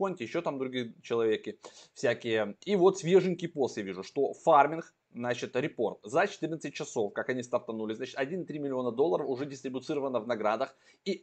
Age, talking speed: 20-39, 160 wpm